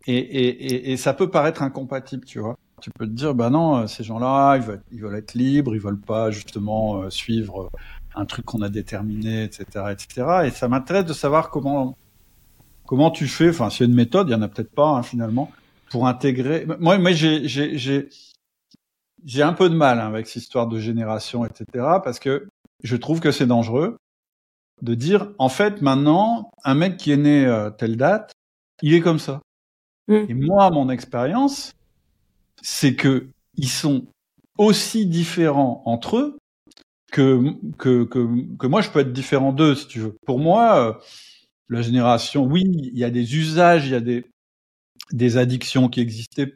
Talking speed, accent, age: 190 wpm, French, 50-69